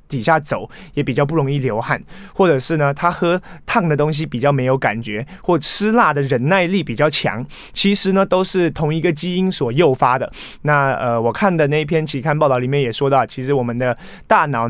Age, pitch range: 20-39, 130-170 Hz